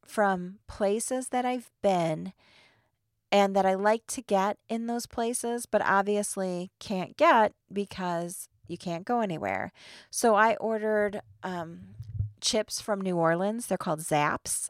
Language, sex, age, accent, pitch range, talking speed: English, female, 30-49, American, 165-215 Hz, 140 wpm